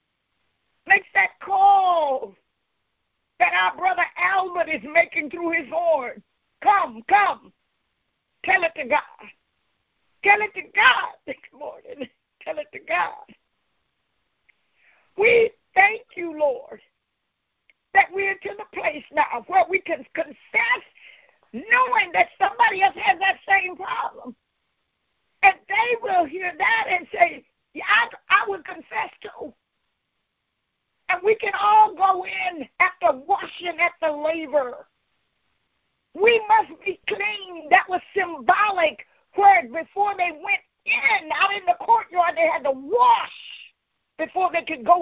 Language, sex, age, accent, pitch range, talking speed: English, female, 50-69, American, 320-405 Hz, 130 wpm